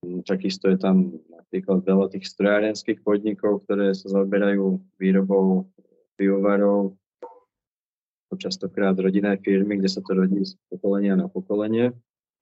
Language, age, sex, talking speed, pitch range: Slovak, 20-39, male, 115 wpm, 95-105 Hz